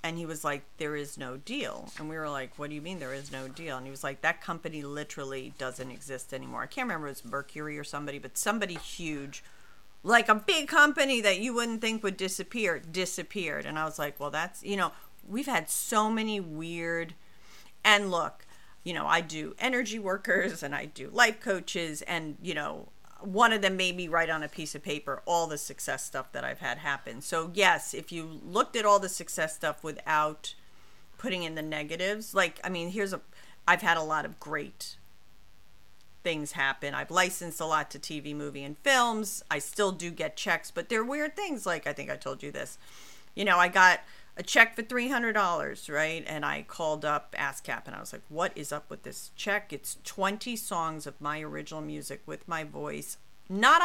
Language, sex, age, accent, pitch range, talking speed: English, female, 40-59, American, 150-200 Hz, 210 wpm